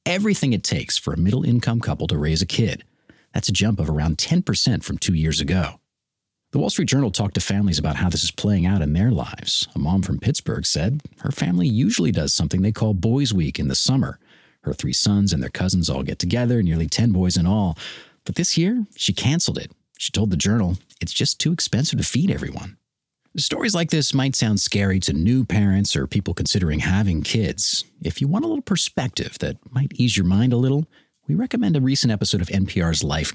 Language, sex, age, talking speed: English, male, 40-59, 215 wpm